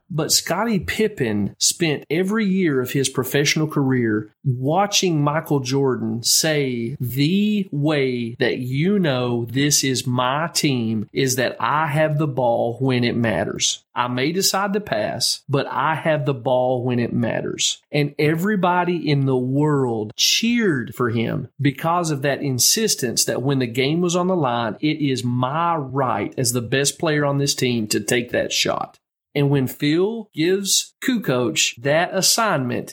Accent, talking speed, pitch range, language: American, 160 wpm, 125-165 Hz, English